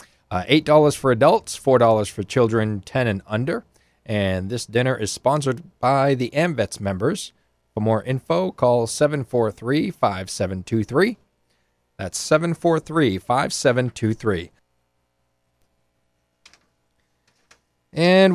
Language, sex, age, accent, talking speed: English, male, 40-59, American, 95 wpm